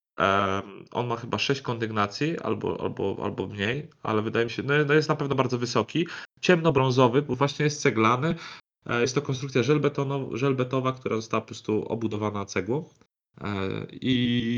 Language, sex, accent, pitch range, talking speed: Polish, male, native, 110-140 Hz, 140 wpm